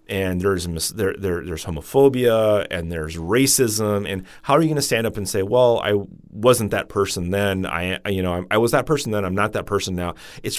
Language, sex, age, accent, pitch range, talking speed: English, male, 30-49, American, 90-115 Hz, 230 wpm